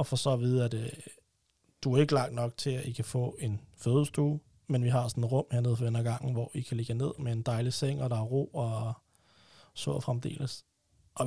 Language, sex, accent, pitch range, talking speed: Danish, male, native, 115-140 Hz, 250 wpm